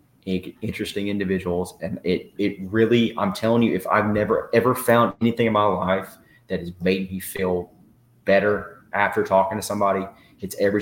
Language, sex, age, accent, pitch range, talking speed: English, male, 30-49, American, 90-105 Hz, 165 wpm